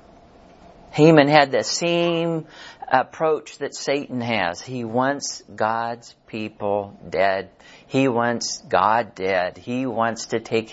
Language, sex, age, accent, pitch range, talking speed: English, male, 50-69, American, 100-120 Hz, 115 wpm